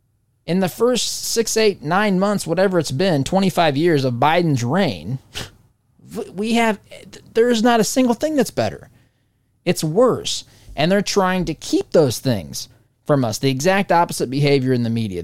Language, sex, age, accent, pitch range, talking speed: English, male, 20-39, American, 115-170 Hz, 165 wpm